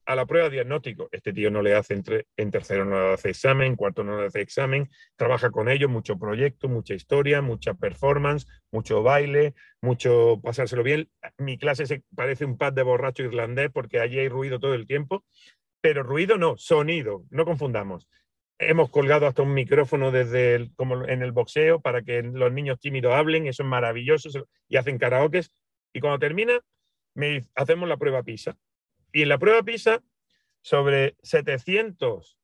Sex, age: male, 40-59